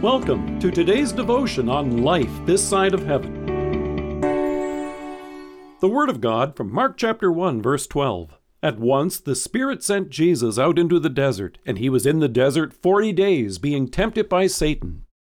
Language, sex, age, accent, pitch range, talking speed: English, male, 50-69, American, 120-180 Hz, 165 wpm